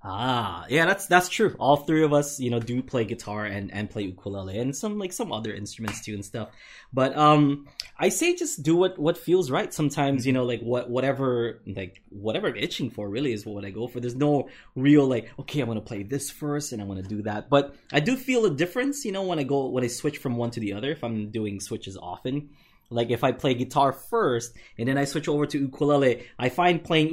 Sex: male